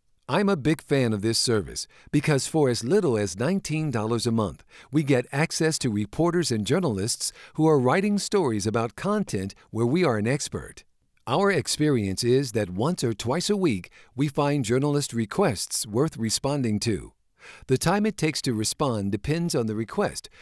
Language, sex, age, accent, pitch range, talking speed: English, male, 50-69, American, 115-160 Hz, 175 wpm